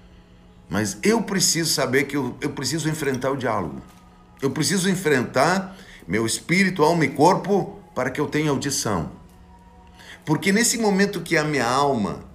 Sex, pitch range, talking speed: male, 110-175 Hz, 150 wpm